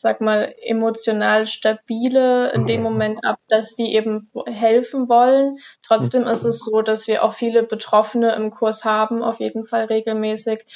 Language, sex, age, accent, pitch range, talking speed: German, female, 20-39, German, 210-225 Hz, 160 wpm